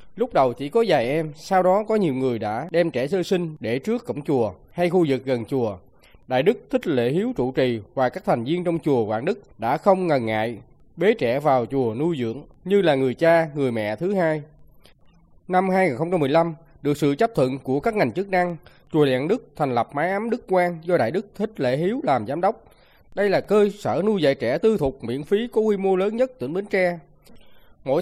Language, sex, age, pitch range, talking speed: Vietnamese, male, 20-39, 135-195 Hz, 230 wpm